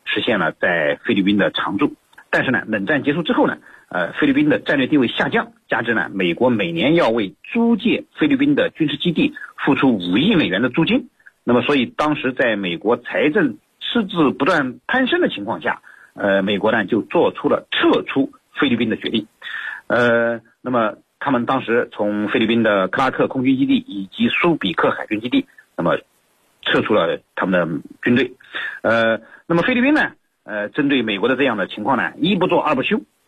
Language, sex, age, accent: Chinese, male, 50-69, native